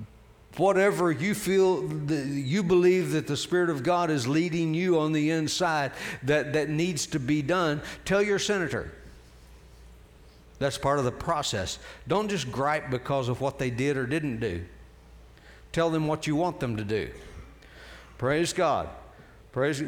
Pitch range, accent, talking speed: 115-150 Hz, American, 160 wpm